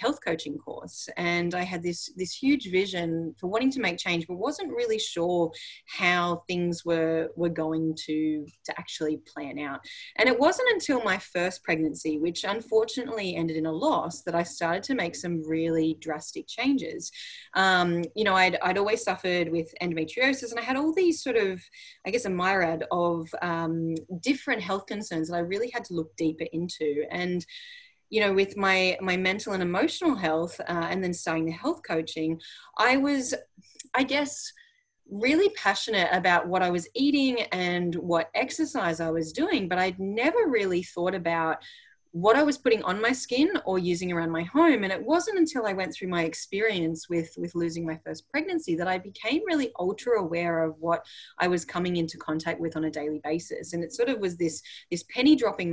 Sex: female